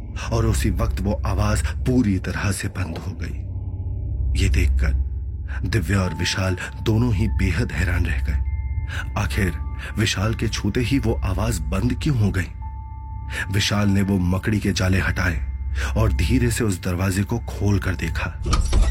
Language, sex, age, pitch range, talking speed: Hindi, male, 30-49, 85-100 Hz, 150 wpm